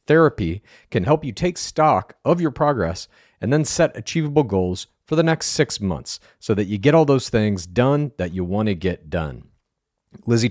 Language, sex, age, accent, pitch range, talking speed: English, male, 40-59, American, 100-150 Hz, 195 wpm